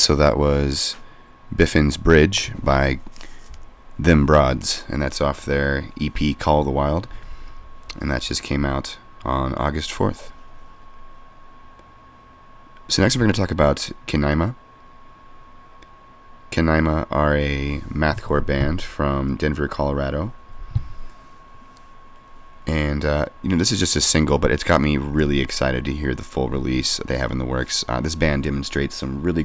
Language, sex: English, male